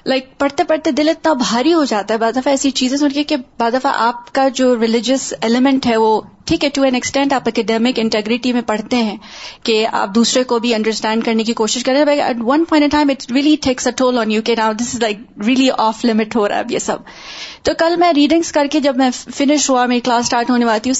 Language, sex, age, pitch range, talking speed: Urdu, female, 30-49, 245-300 Hz, 245 wpm